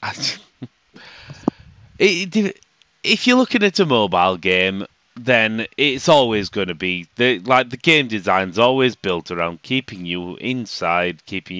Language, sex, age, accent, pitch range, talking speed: English, male, 30-49, British, 95-125 Hz, 150 wpm